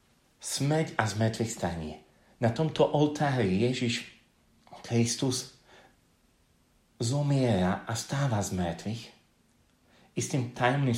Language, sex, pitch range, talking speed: Slovak, male, 95-120 Hz, 85 wpm